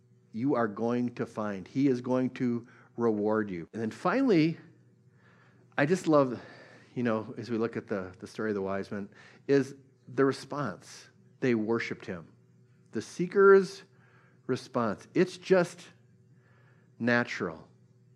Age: 50-69